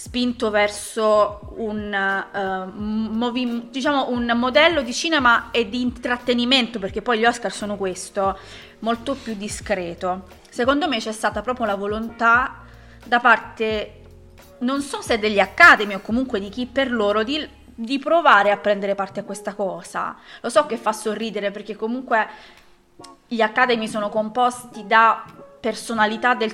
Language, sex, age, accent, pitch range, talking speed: Italian, female, 20-39, native, 200-240 Hz, 140 wpm